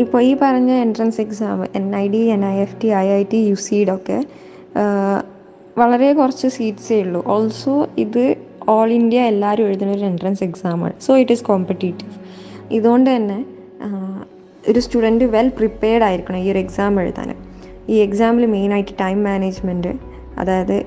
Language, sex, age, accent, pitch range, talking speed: Malayalam, female, 20-39, native, 195-235 Hz, 160 wpm